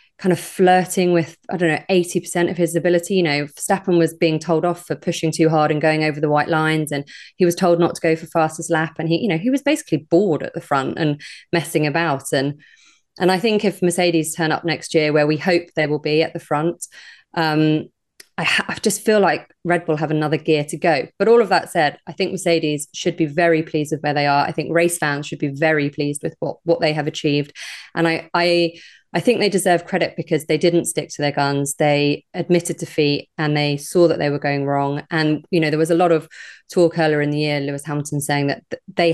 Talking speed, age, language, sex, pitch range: 240 wpm, 20-39, English, female, 150-170 Hz